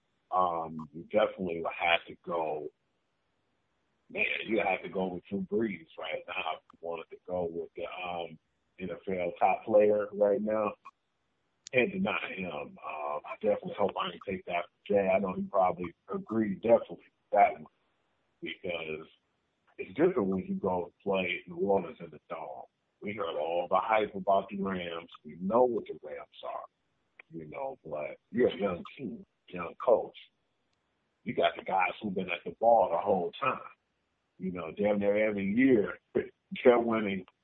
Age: 50-69